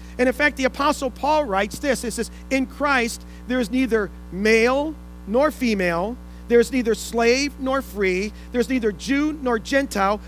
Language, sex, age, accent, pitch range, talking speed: English, male, 40-59, American, 190-260 Hz, 165 wpm